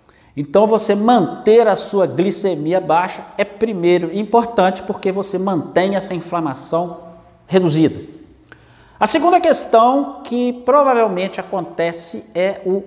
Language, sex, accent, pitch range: Portuguese, male, Brazilian, 170-225 Hz